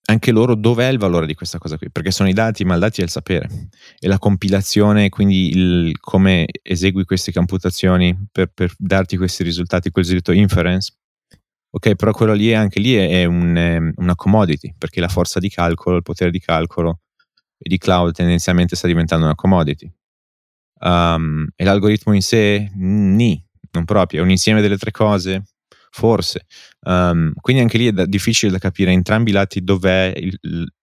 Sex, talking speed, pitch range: male, 185 wpm, 85-100 Hz